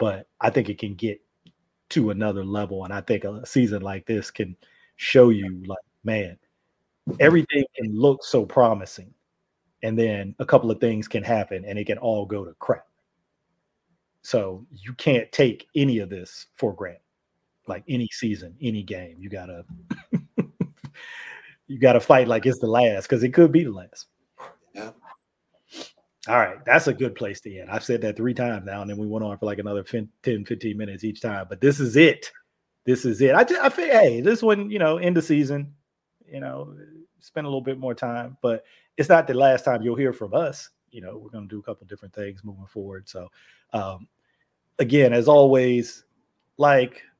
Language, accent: English, American